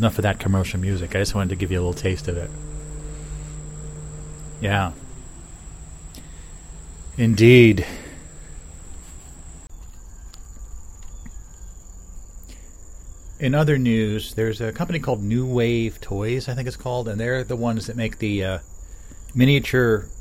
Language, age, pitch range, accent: English, 30-49, 85-115 Hz, American